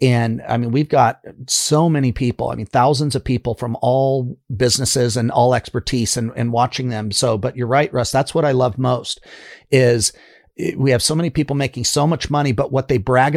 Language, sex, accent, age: English, male, American, 40-59